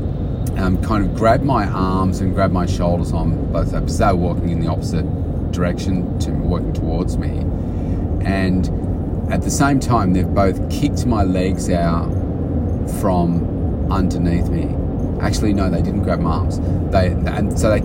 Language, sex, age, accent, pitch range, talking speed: English, male, 30-49, Australian, 85-100 Hz, 170 wpm